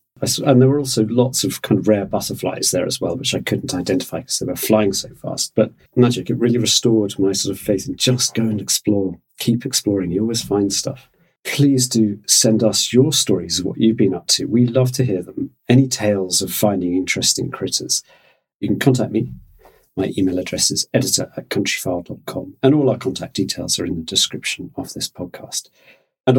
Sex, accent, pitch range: male, British, 100-130 Hz